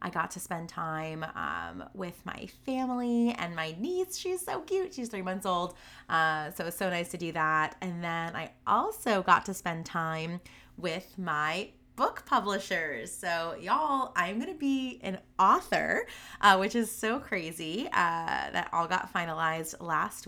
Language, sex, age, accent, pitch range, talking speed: English, female, 20-39, American, 160-205 Hz, 170 wpm